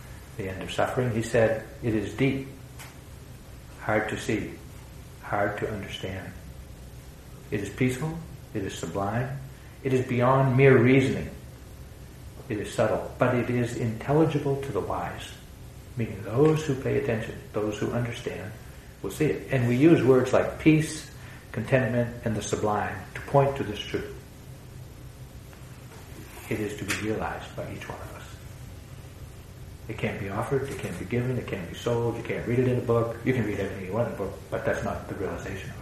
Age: 60-79